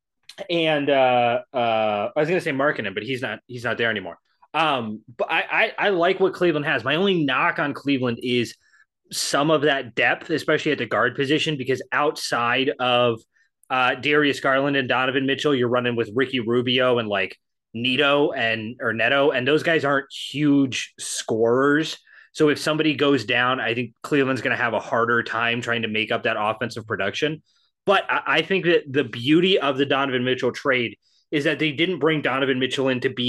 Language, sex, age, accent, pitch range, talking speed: English, male, 20-39, American, 120-150 Hz, 195 wpm